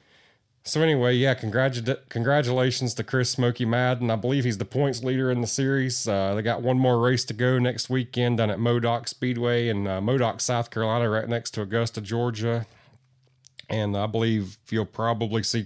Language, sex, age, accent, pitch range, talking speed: English, male, 30-49, American, 105-125 Hz, 180 wpm